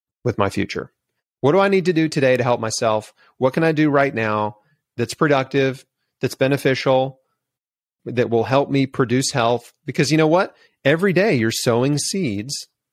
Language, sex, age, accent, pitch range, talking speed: English, male, 40-59, American, 110-145 Hz, 175 wpm